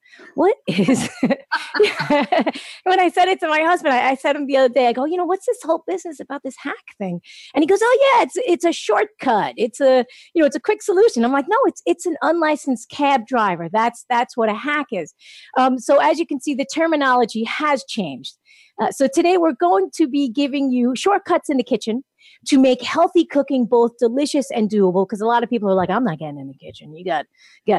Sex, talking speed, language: female, 230 wpm, English